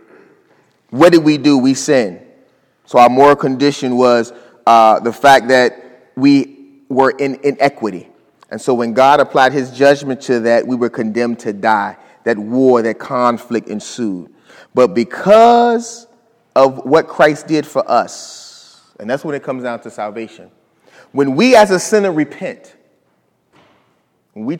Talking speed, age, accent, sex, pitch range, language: 150 wpm, 30-49, American, male, 135-195 Hz, English